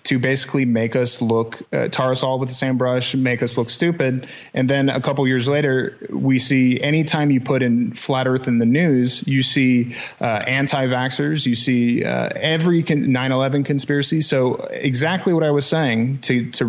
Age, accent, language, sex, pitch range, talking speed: 30-49, American, English, male, 120-140 Hz, 200 wpm